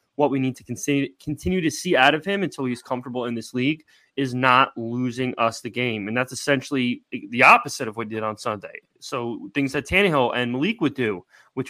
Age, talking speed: 20-39, 215 wpm